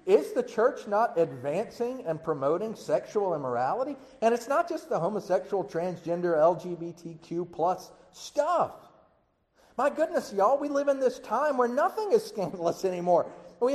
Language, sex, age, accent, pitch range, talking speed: English, male, 40-59, American, 185-280 Hz, 145 wpm